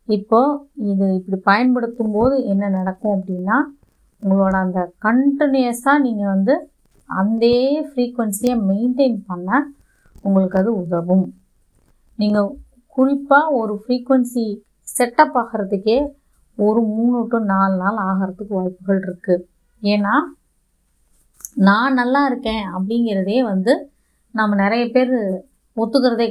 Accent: native